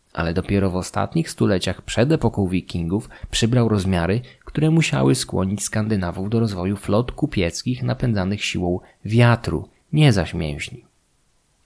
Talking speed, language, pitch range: 125 wpm, Polish, 95-125 Hz